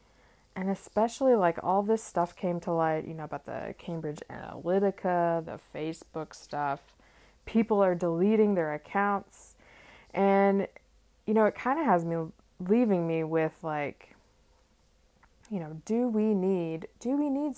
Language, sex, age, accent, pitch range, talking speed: English, female, 20-39, American, 160-200 Hz, 145 wpm